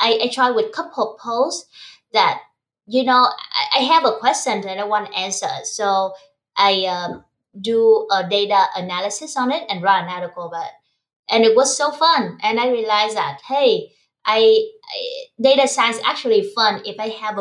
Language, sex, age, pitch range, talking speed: English, female, 20-39, 195-255 Hz, 185 wpm